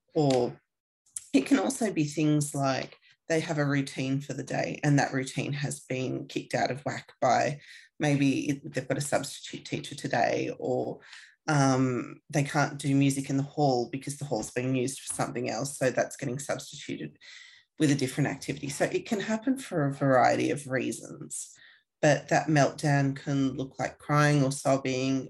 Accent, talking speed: Australian, 175 wpm